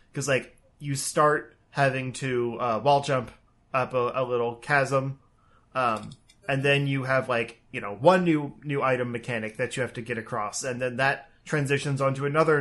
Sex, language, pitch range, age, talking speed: male, English, 120-150 Hz, 20-39, 185 wpm